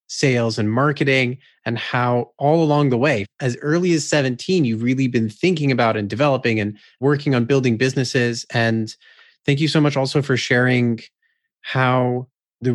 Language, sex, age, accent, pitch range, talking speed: English, male, 30-49, American, 120-150 Hz, 165 wpm